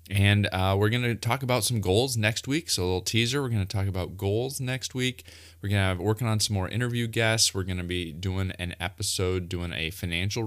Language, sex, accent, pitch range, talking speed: English, male, American, 90-105 Hz, 245 wpm